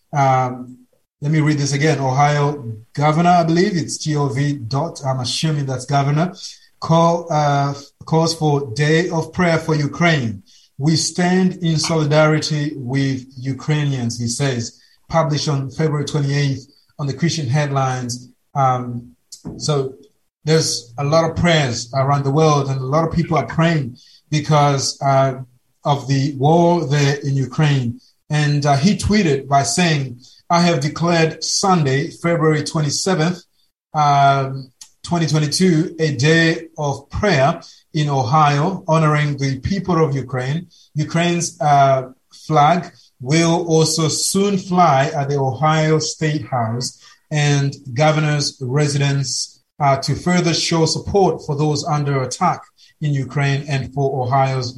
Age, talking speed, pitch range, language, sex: 30-49, 135 wpm, 135-160 Hz, English, male